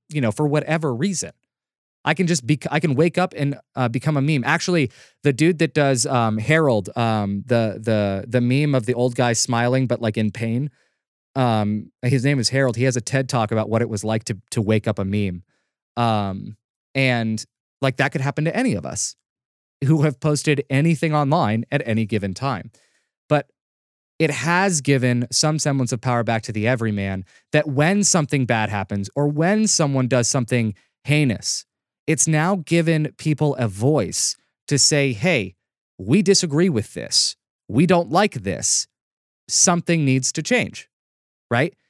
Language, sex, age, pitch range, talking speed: English, male, 20-39, 115-155 Hz, 175 wpm